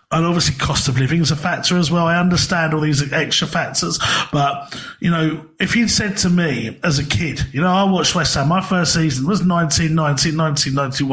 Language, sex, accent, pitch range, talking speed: English, male, British, 140-175 Hz, 220 wpm